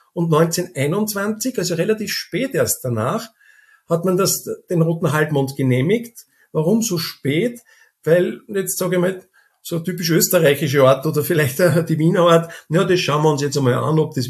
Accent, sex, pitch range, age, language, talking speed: Austrian, male, 155-200 Hz, 50-69, German, 170 wpm